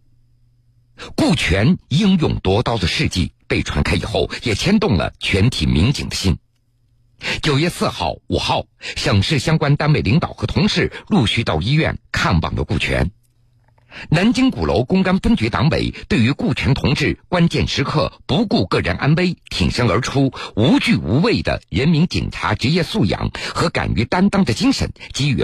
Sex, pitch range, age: male, 115-165 Hz, 60-79